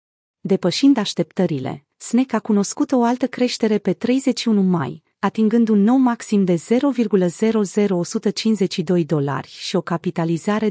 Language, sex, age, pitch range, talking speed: Romanian, female, 30-49, 180-230 Hz, 120 wpm